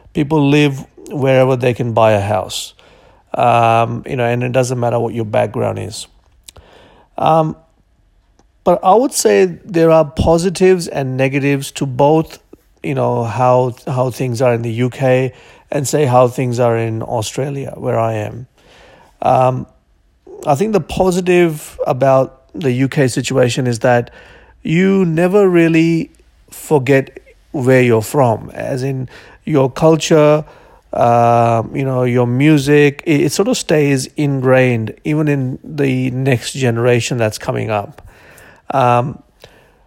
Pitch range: 120-145 Hz